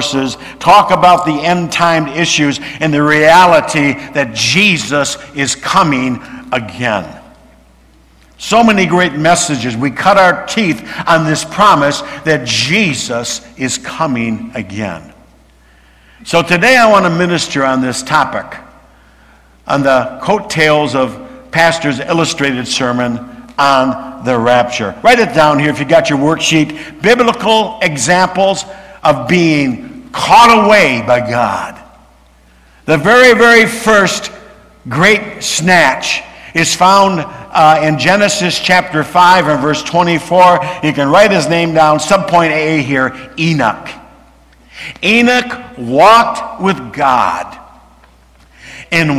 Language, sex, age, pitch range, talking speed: English, male, 60-79, 130-185 Hz, 120 wpm